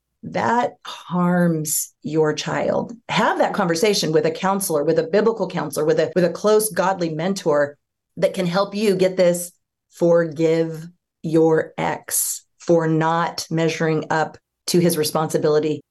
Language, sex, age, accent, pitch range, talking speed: English, female, 40-59, American, 160-190 Hz, 140 wpm